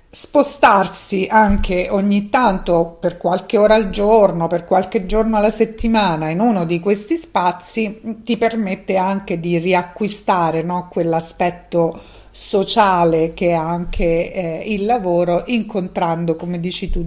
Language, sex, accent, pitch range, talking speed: Italian, female, native, 175-205 Hz, 130 wpm